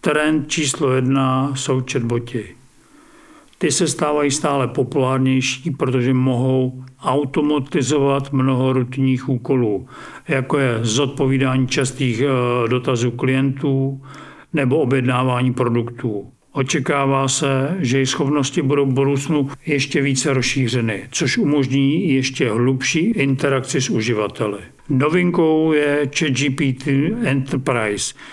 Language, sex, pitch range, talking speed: Czech, male, 130-145 Hz, 100 wpm